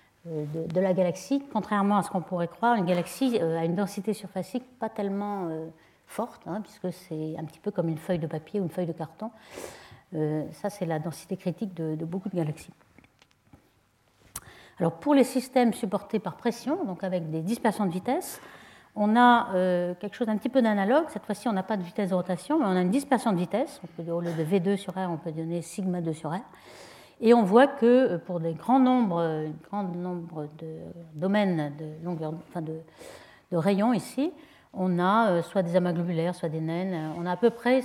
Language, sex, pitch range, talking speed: French, female, 170-220 Hz, 205 wpm